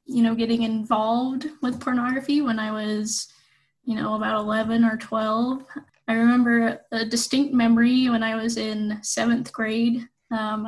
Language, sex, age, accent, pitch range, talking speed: English, female, 10-29, American, 230-255 Hz, 150 wpm